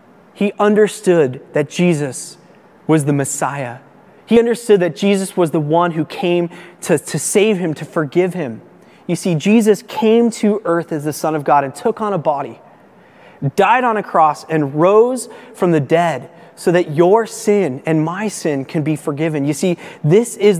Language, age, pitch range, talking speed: English, 30-49, 145-190 Hz, 180 wpm